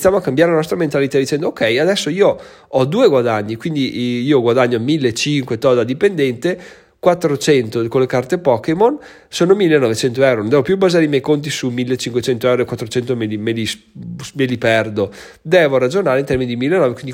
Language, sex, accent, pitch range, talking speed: Italian, male, native, 120-150 Hz, 190 wpm